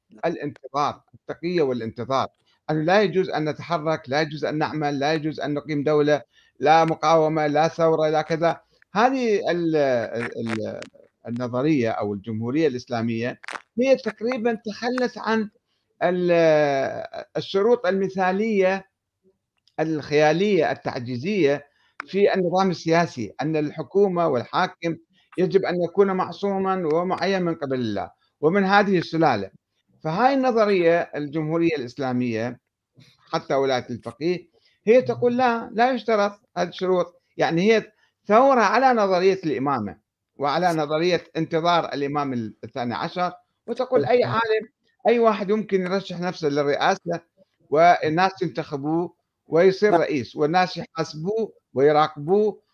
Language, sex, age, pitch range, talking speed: Arabic, male, 50-69, 150-200 Hz, 105 wpm